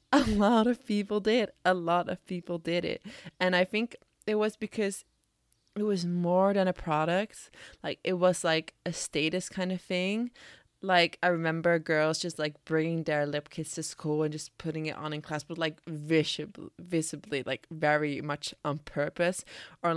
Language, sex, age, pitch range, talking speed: English, female, 20-39, 155-195 Hz, 185 wpm